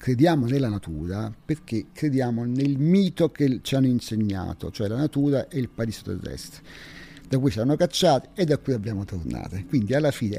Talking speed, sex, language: 180 wpm, male, Italian